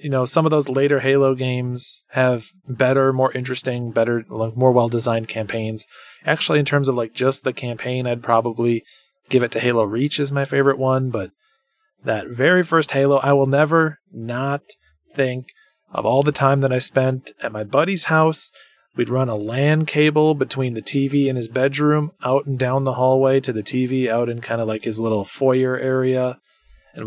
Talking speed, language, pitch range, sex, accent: 190 wpm, English, 120-150 Hz, male, American